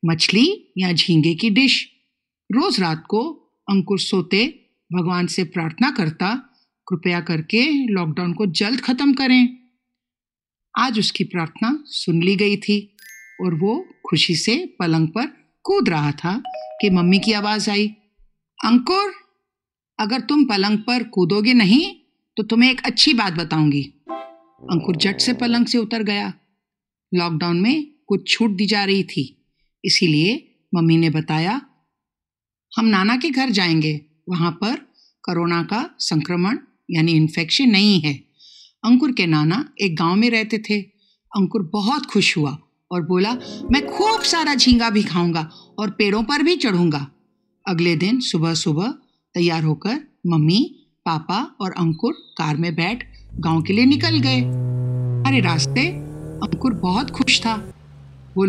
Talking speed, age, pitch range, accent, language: 140 wpm, 50-69, 170-245 Hz, native, Hindi